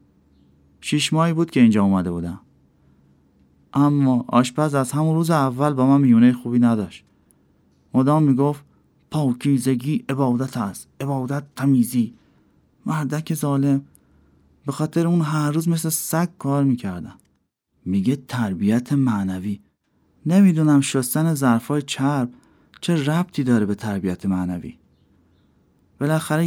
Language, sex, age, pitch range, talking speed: Persian, male, 30-49, 110-145 Hz, 115 wpm